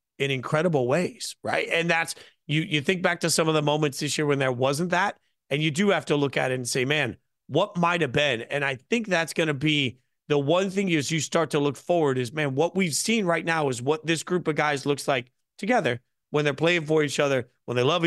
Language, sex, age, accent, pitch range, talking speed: English, male, 40-59, American, 140-180 Hz, 250 wpm